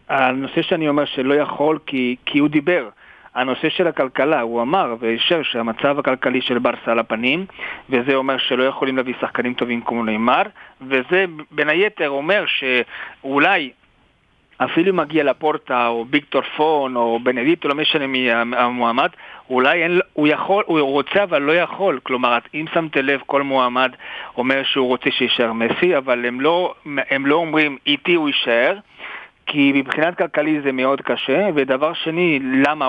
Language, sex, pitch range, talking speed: Hebrew, male, 125-155 Hz, 160 wpm